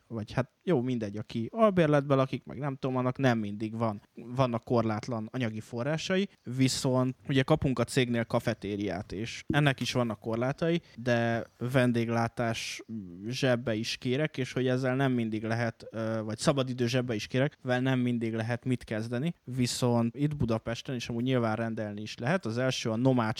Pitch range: 115-125 Hz